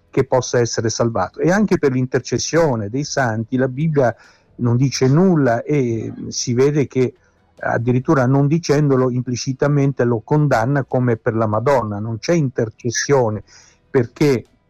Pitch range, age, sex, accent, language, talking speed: 120-145 Hz, 50-69, male, native, Italian, 135 wpm